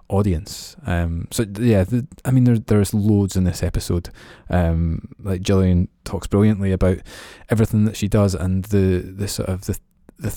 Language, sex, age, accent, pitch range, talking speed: English, male, 20-39, British, 95-105 Hz, 175 wpm